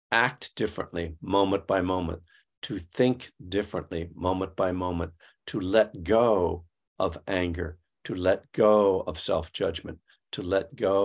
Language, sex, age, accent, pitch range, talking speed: English, male, 60-79, American, 85-110 Hz, 135 wpm